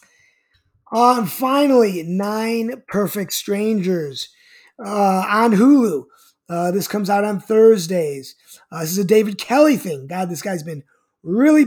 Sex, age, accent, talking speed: male, 20-39, American, 140 wpm